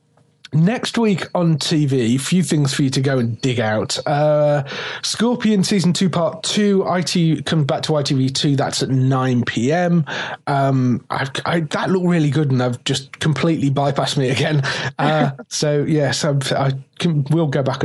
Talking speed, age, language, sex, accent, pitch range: 175 wpm, 30-49, English, male, British, 130-155 Hz